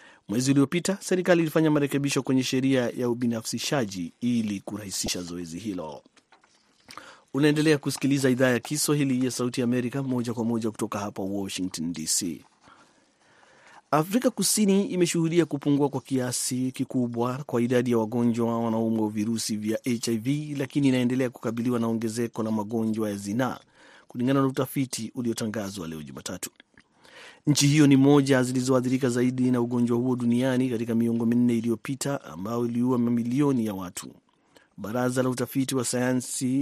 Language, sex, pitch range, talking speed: Swahili, male, 115-140 Hz, 140 wpm